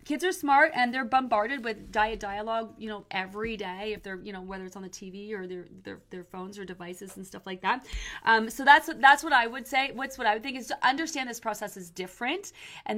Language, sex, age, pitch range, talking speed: English, female, 30-49, 190-255 Hz, 250 wpm